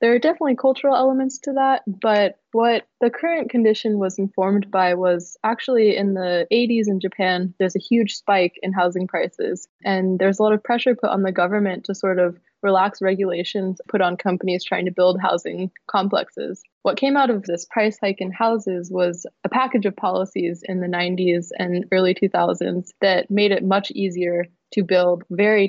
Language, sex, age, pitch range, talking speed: English, female, 20-39, 185-215 Hz, 185 wpm